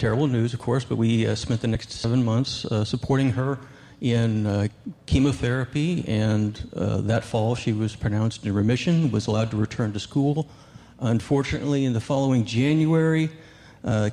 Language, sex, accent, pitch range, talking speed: English, male, American, 110-130 Hz, 165 wpm